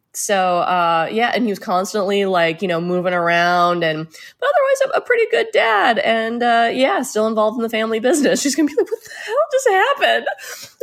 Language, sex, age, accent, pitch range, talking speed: English, female, 20-39, American, 170-255 Hz, 210 wpm